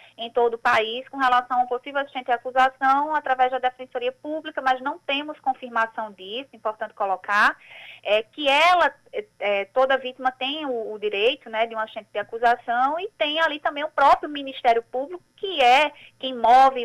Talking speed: 165 wpm